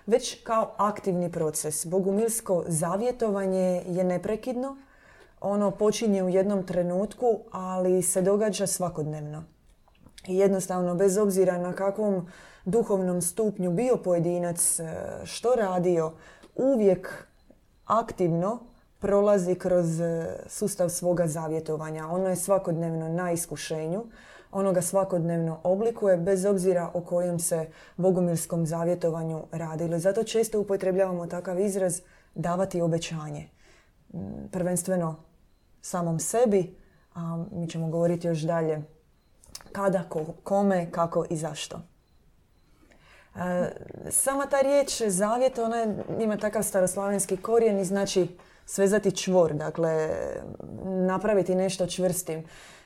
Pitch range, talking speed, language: 170-200 Hz, 105 wpm, Croatian